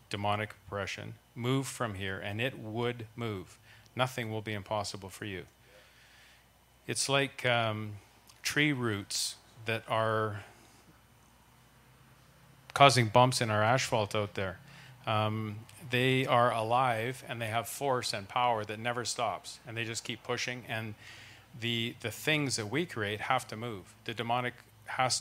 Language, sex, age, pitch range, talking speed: English, male, 40-59, 110-130 Hz, 145 wpm